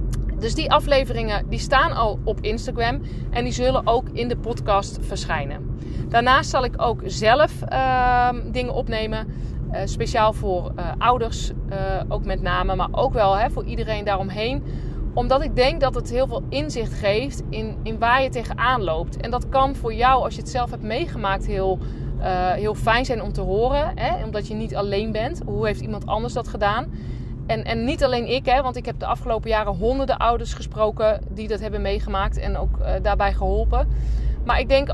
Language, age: Dutch, 30-49